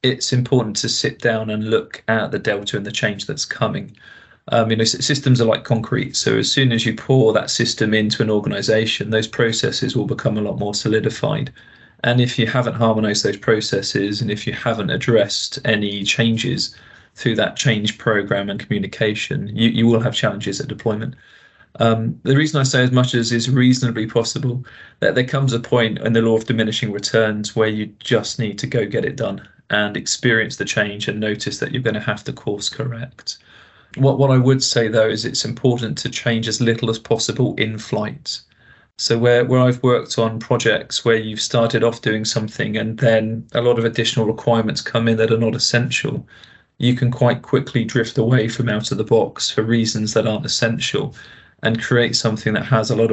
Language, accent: English, British